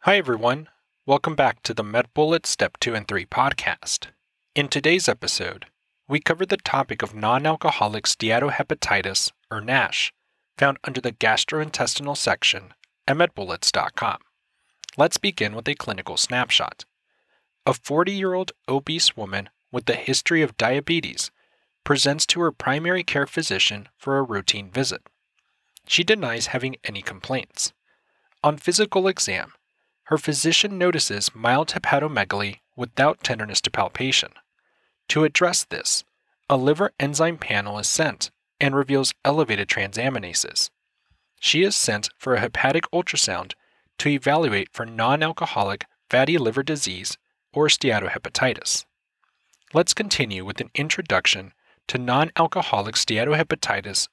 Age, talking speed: 30-49, 125 wpm